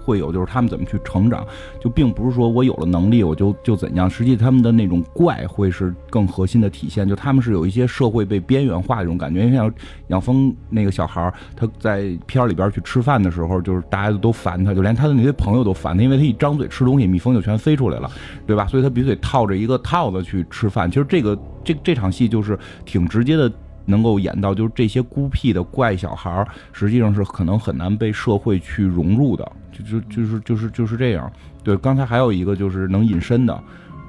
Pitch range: 95-125 Hz